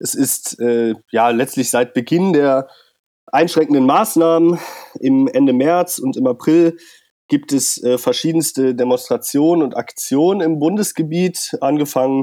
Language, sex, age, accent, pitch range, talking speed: German, male, 30-49, German, 120-155 Hz, 130 wpm